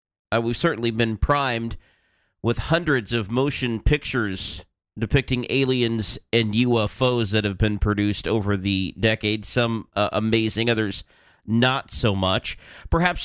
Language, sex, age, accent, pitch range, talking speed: English, male, 40-59, American, 110-135 Hz, 130 wpm